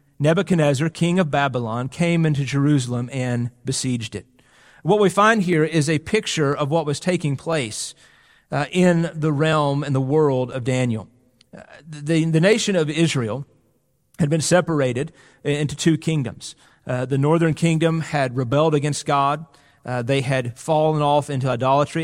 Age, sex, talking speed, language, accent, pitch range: 40-59, male, 160 wpm, English, American, 140-170 Hz